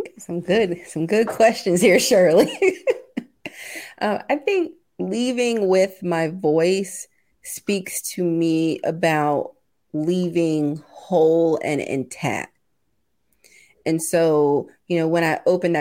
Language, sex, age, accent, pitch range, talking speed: English, female, 30-49, American, 150-175 Hz, 110 wpm